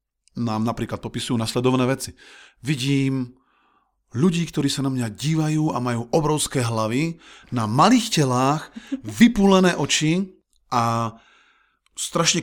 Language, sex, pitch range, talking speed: Slovak, male, 110-150 Hz, 110 wpm